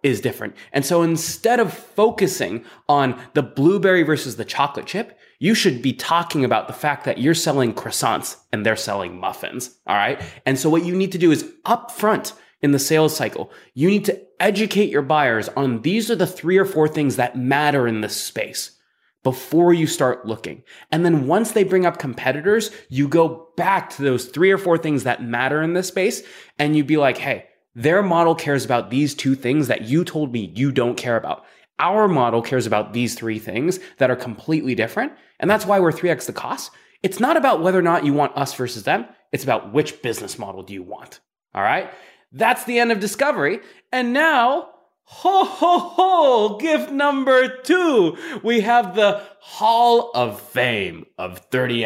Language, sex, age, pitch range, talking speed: English, male, 20-39, 130-205 Hz, 195 wpm